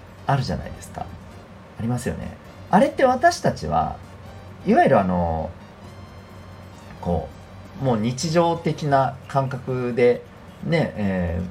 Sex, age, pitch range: male, 40-59, 90-110 Hz